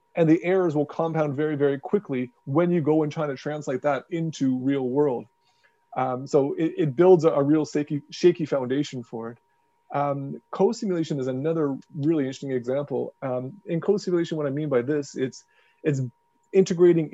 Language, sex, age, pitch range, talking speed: English, male, 30-49, 130-165 Hz, 175 wpm